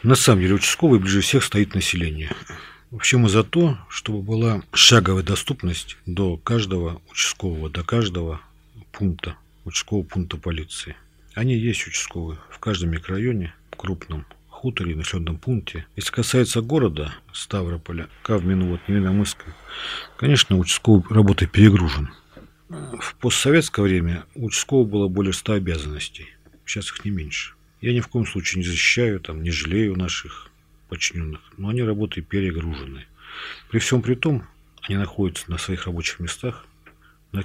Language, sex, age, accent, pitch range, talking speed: Russian, male, 50-69, native, 85-110 Hz, 140 wpm